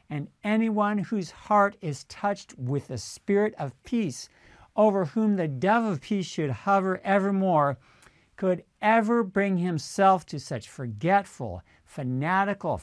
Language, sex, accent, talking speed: English, male, American, 130 wpm